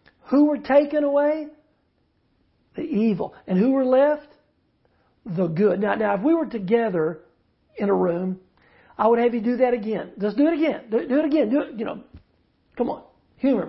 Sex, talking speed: male, 195 wpm